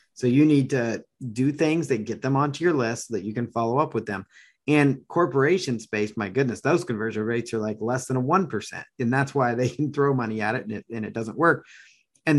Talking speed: 230 wpm